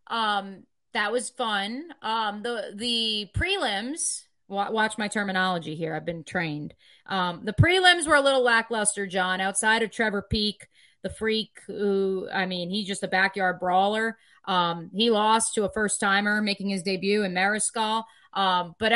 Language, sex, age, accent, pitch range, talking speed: English, female, 30-49, American, 195-245 Hz, 160 wpm